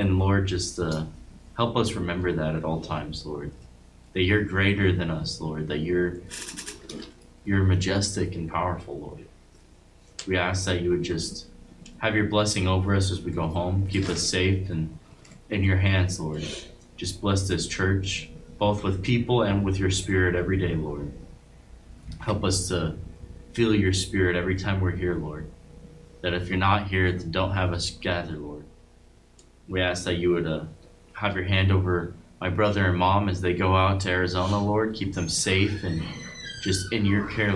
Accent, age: American, 20-39